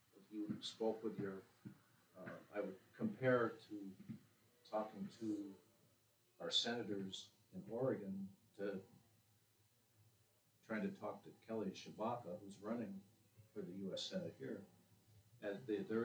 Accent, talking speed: American, 120 wpm